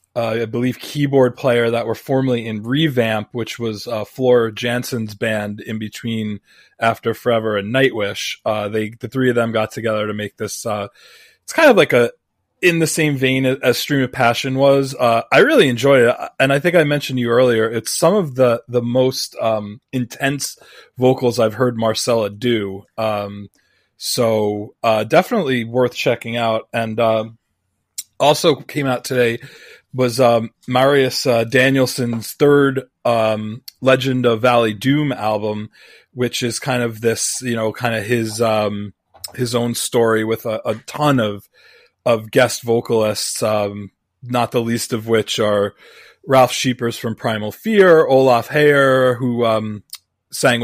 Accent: American